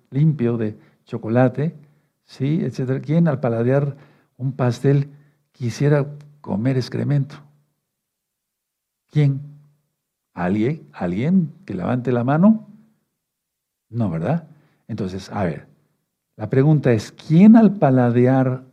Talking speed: 100 wpm